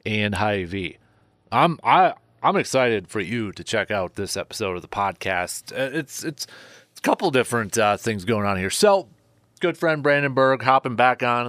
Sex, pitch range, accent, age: male, 105-135 Hz, American, 30-49